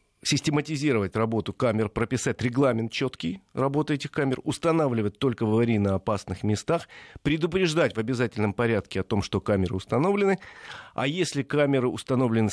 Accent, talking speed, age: native, 140 wpm, 40-59